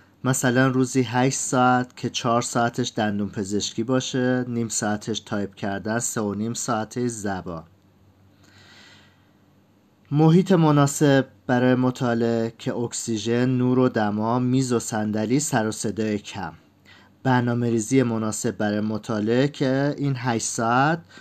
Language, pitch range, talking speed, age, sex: Persian, 105-130 Hz, 125 wpm, 40-59, male